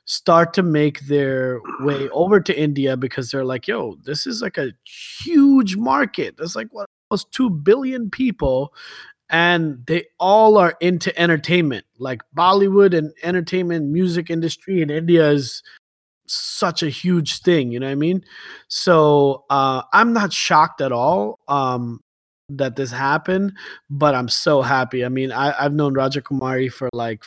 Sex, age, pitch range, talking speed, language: male, 20-39, 130-170 Hz, 160 wpm, English